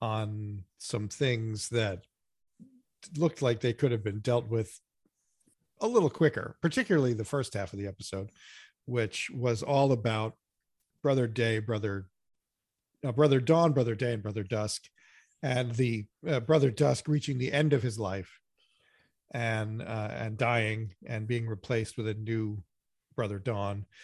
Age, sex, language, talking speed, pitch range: 40-59, male, English, 150 wpm, 105-135 Hz